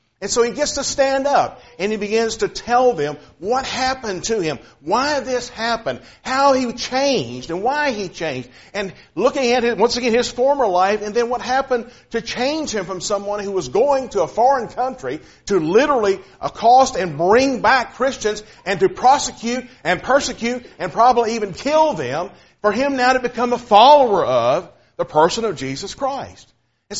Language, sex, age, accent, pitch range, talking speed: English, male, 50-69, American, 170-250 Hz, 185 wpm